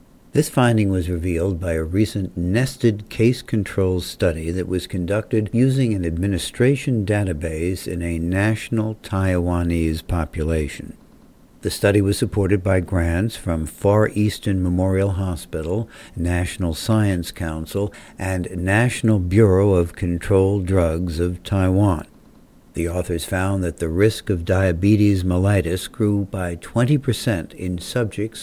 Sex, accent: male, American